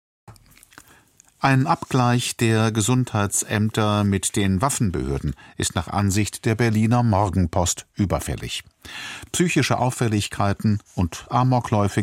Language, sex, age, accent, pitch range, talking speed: German, male, 50-69, German, 95-125 Hz, 90 wpm